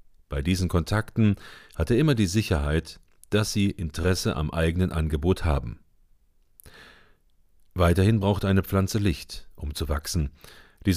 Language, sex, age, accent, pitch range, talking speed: German, male, 40-59, German, 80-105 Hz, 130 wpm